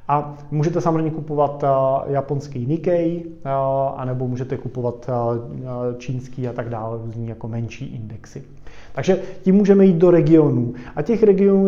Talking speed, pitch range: 135 wpm, 130-155 Hz